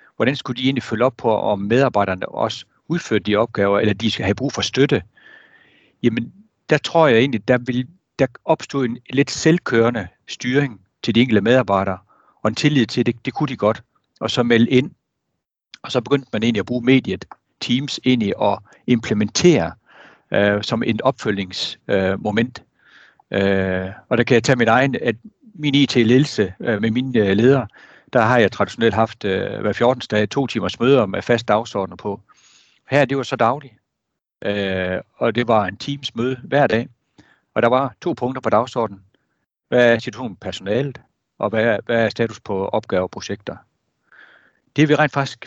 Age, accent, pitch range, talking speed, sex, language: 60-79, native, 105-135 Hz, 180 wpm, male, Danish